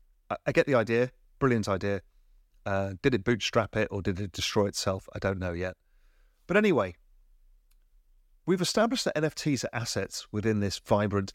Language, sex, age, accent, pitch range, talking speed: English, male, 30-49, British, 90-130 Hz, 165 wpm